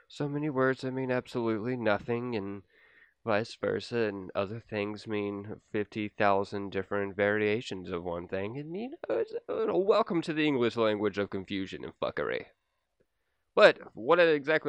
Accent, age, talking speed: American, 20-39, 150 wpm